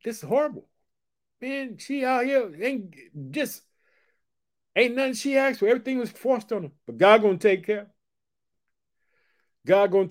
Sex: male